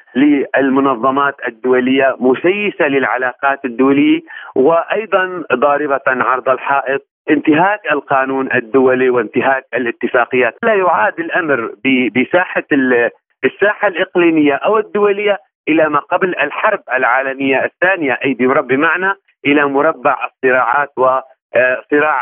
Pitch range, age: 135-195 Hz, 40-59